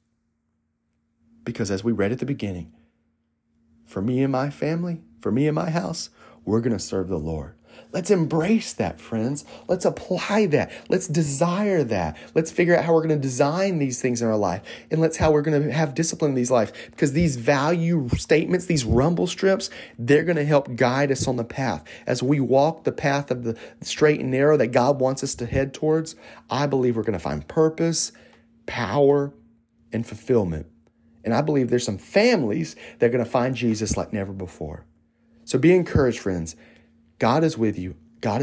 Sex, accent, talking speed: male, American, 190 wpm